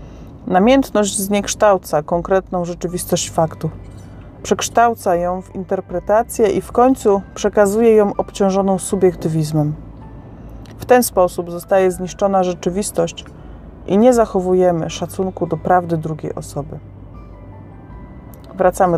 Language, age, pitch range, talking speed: Polish, 30-49, 165-210 Hz, 100 wpm